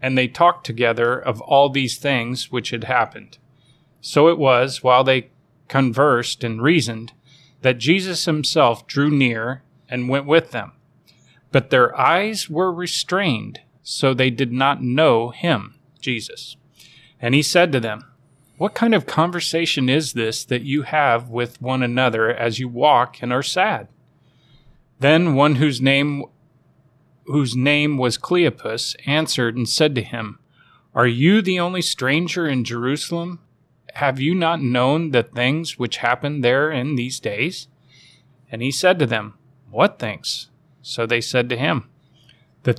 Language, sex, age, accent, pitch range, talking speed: English, male, 30-49, American, 125-150 Hz, 150 wpm